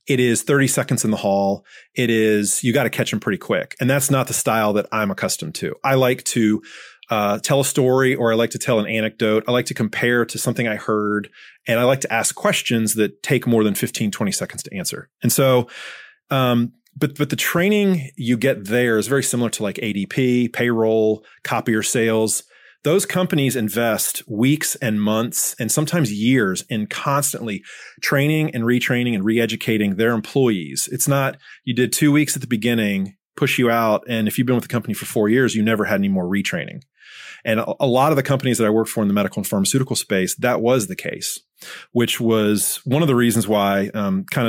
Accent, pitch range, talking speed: American, 110-135 Hz, 210 wpm